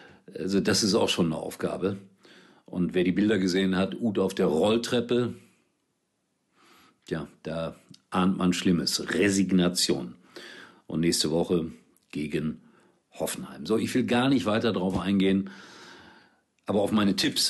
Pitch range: 90-110 Hz